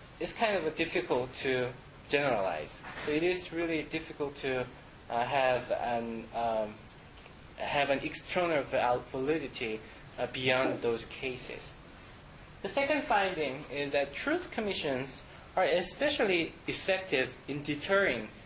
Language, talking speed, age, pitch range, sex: English, 120 wpm, 20-39, 125-165 Hz, male